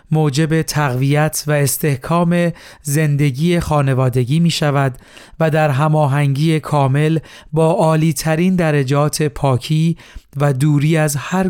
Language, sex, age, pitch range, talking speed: Persian, male, 40-59, 140-160 Hz, 105 wpm